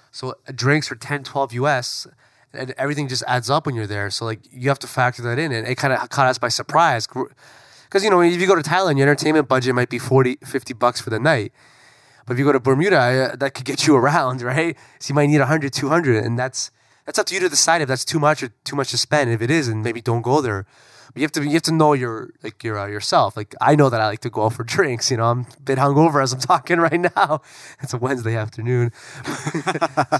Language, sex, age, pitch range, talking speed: English, male, 20-39, 120-150 Hz, 270 wpm